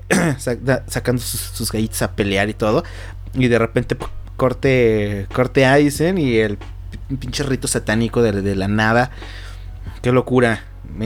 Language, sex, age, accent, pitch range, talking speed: Spanish, male, 30-49, Mexican, 95-140 Hz, 130 wpm